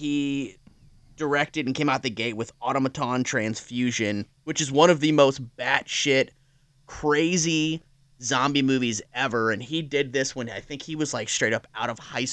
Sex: male